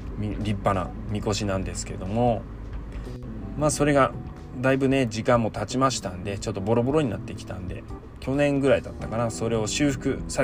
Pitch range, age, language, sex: 100-130 Hz, 20-39, Japanese, male